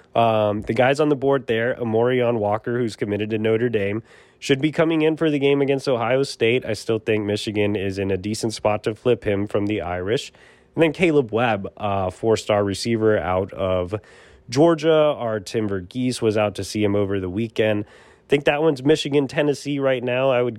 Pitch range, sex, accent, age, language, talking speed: 100-130 Hz, male, American, 20-39, English, 205 wpm